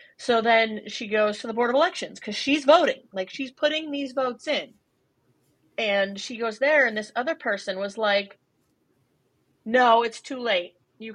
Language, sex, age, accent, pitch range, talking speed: English, female, 30-49, American, 215-270 Hz, 180 wpm